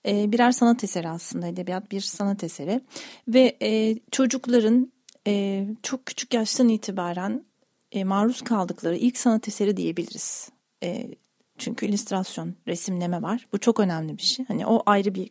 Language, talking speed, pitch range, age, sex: Turkish, 150 wpm, 195-245 Hz, 40-59, female